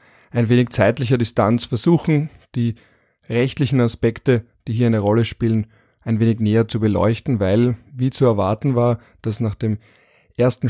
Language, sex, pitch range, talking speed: German, male, 115-135 Hz, 150 wpm